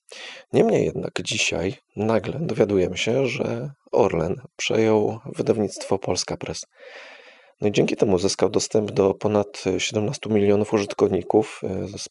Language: Polish